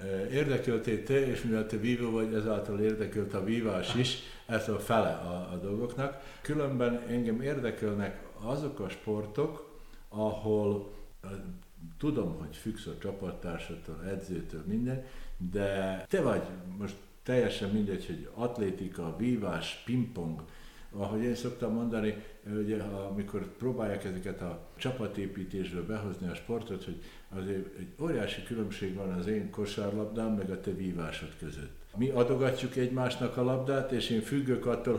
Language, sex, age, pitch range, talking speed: Hungarian, male, 60-79, 95-120 Hz, 135 wpm